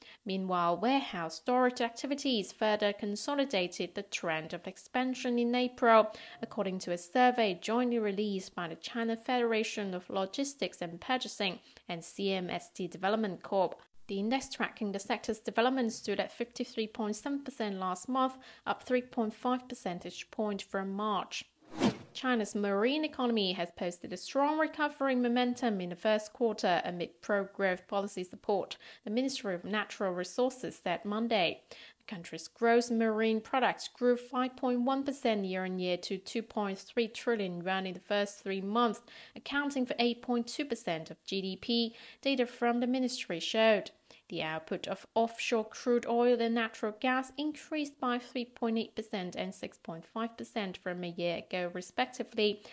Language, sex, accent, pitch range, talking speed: English, female, British, 195-245 Hz, 140 wpm